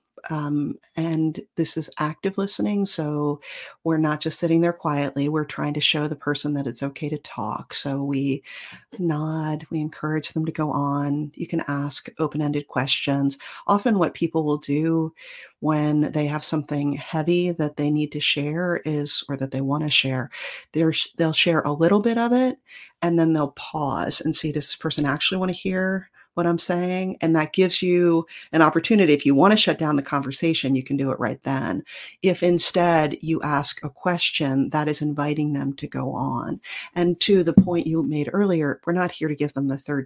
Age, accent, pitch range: 40-59, American, 145-170 Hz